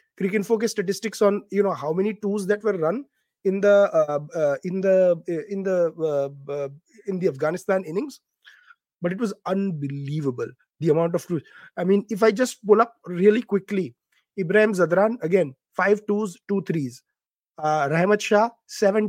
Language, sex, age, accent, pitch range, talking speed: English, male, 30-49, Indian, 155-205 Hz, 175 wpm